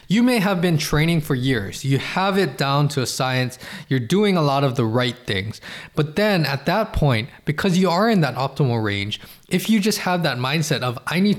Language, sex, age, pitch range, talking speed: English, male, 20-39, 130-170 Hz, 225 wpm